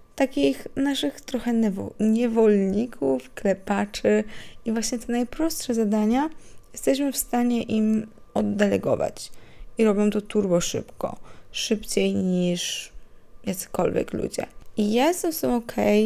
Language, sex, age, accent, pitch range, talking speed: Polish, female, 20-39, native, 185-235 Hz, 110 wpm